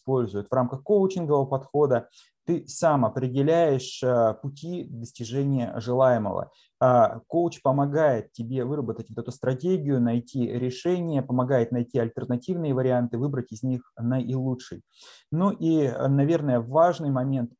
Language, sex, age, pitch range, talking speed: Russian, male, 20-39, 120-145 Hz, 105 wpm